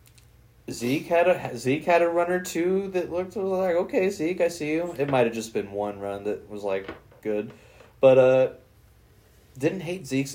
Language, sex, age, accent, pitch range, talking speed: English, male, 20-39, American, 110-135 Hz, 185 wpm